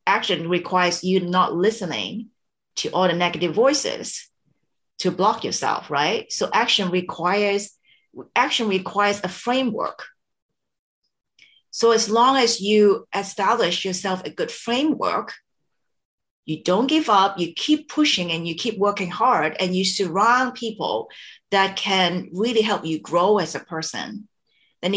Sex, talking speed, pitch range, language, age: female, 135 wpm, 180-235 Hz, English, 40-59